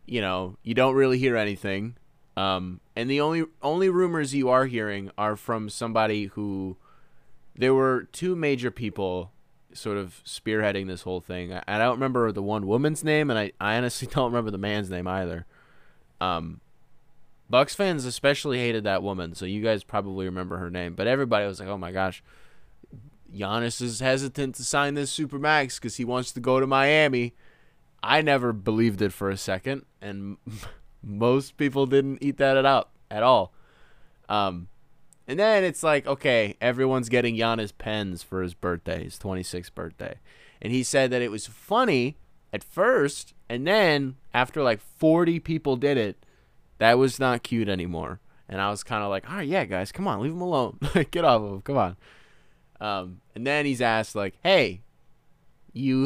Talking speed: 180 wpm